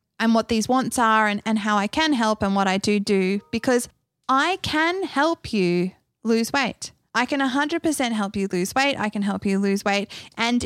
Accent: Australian